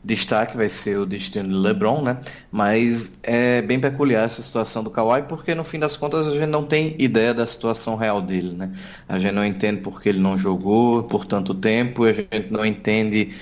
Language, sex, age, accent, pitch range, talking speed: Portuguese, male, 20-39, Brazilian, 105-125 Hz, 205 wpm